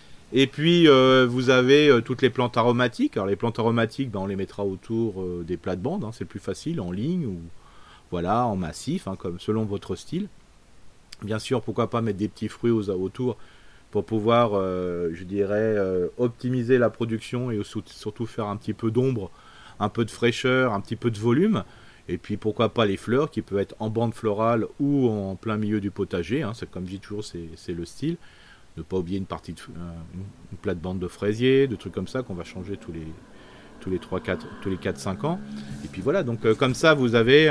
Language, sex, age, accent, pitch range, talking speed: French, male, 40-59, French, 100-125 Hz, 215 wpm